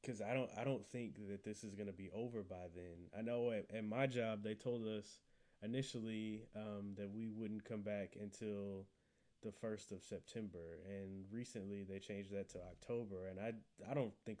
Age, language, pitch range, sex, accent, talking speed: 20-39, English, 95-120 Hz, male, American, 195 wpm